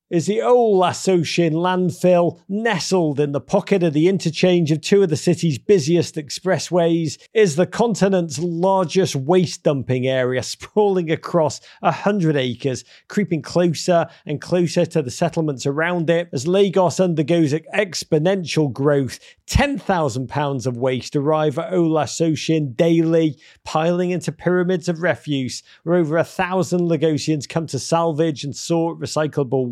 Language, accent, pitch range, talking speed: English, British, 150-180 Hz, 135 wpm